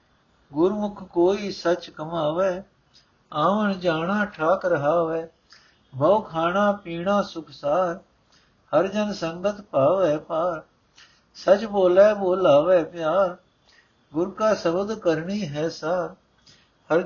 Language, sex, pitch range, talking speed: Punjabi, male, 155-195 Hz, 100 wpm